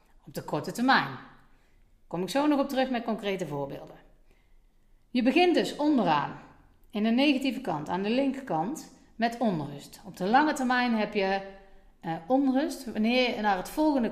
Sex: female